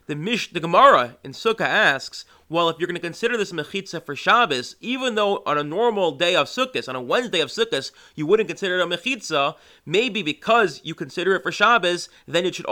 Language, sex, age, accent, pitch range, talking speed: English, male, 30-49, American, 150-205 Hz, 210 wpm